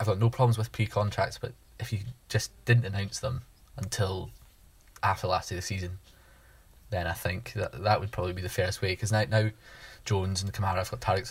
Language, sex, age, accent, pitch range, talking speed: English, male, 20-39, British, 95-110 Hz, 210 wpm